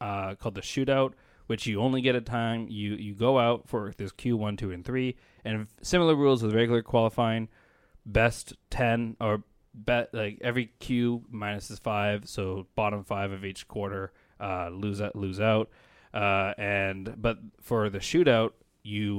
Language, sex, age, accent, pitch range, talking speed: English, male, 20-39, American, 100-120 Hz, 175 wpm